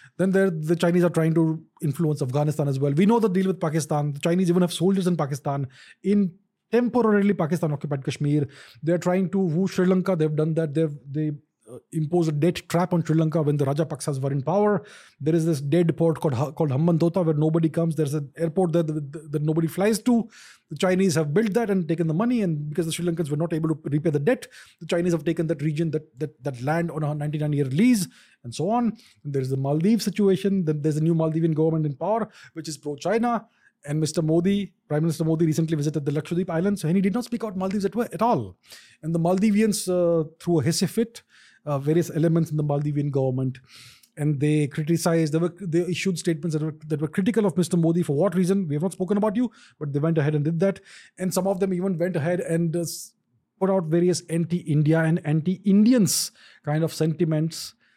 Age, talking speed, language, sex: 30-49, 225 wpm, English, male